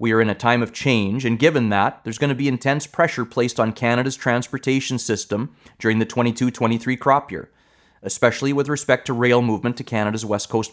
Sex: male